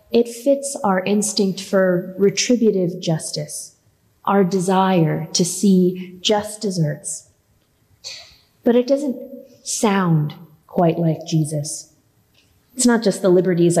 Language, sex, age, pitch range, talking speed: English, female, 30-49, 165-205 Hz, 110 wpm